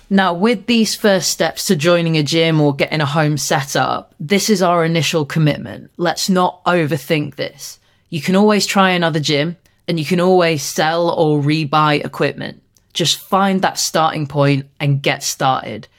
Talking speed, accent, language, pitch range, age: 175 wpm, British, English, 145-180 Hz, 20-39